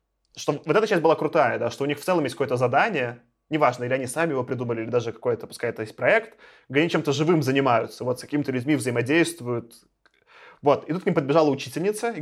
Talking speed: 220 wpm